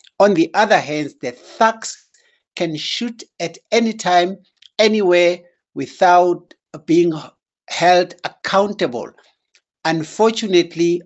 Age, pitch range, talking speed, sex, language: 60-79, 170-225 Hz, 90 wpm, male, English